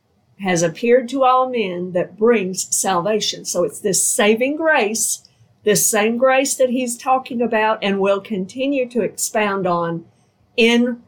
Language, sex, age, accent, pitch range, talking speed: English, female, 50-69, American, 185-240 Hz, 145 wpm